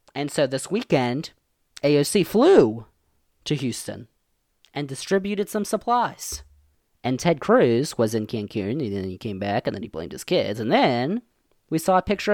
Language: English